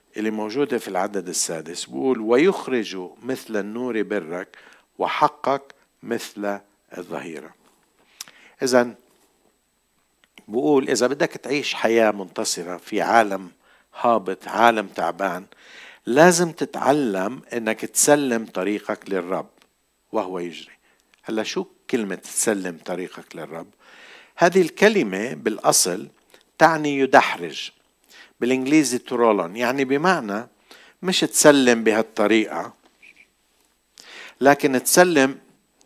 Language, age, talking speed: Arabic, 60-79, 90 wpm